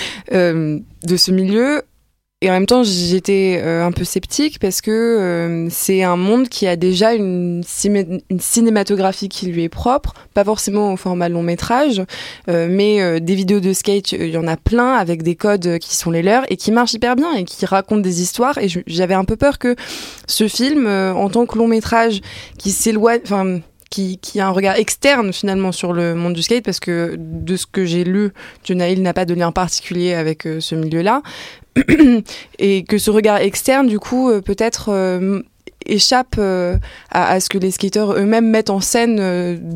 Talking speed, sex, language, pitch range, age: 205 wpm, female, French, 180-220 Hz, 20-39